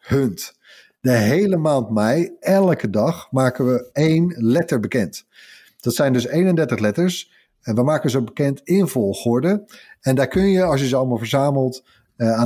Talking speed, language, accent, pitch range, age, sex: 170 wpm, Dutch, Dutch, 115-150 Hz, 50-69, male